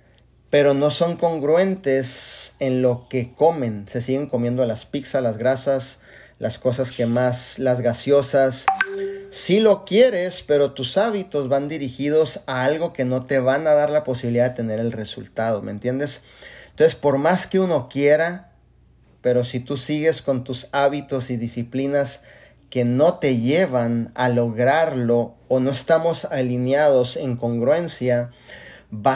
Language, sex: Spanish, male